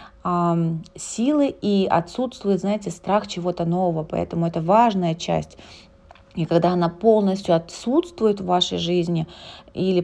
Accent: native